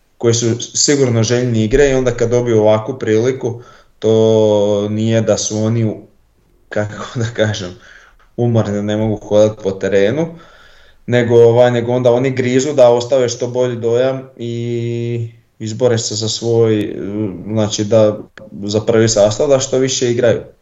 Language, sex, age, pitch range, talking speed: Croatian, male, 20-39, 100-120 Hz, 145 wpm